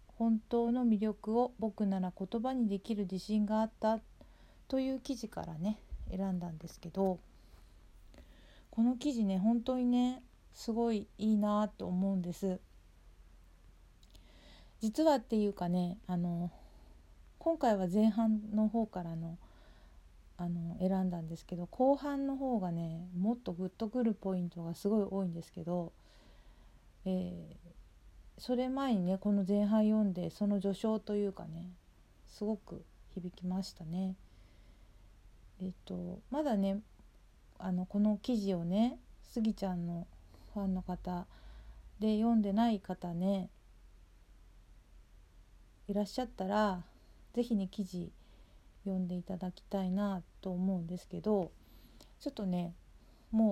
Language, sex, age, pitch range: Japanese, female, 40-59, 170-215 Hz